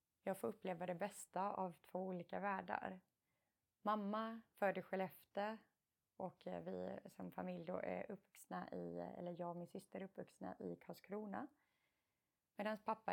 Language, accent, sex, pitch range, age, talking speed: Swedish, native, female, 180-215 Hz, 20-39, 145 wpm